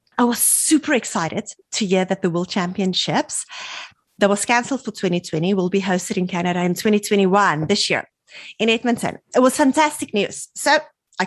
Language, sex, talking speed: English, female, 170 wpm